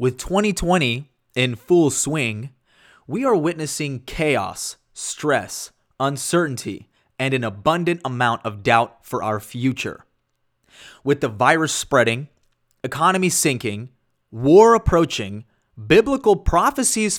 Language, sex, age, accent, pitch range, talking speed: English, male, 20-39, American, 120-160 Hz, 105 wpm